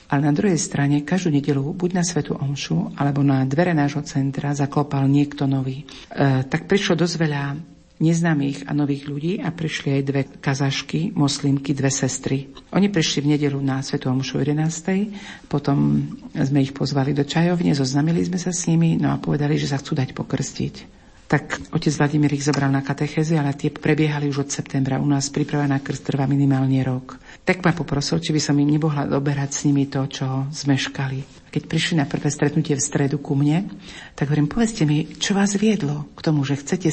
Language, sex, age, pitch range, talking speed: Slovak, female, 50-69, 135-155 Hz, 190 wpm